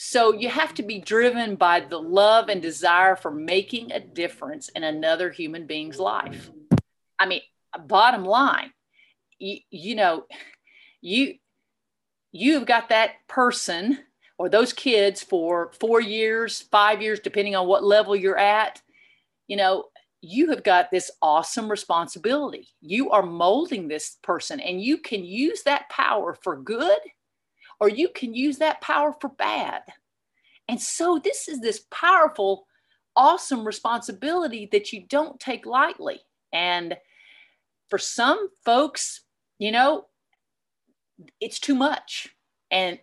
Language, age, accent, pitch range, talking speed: English, 50-69, American, 195-270 Hz, 135 wpm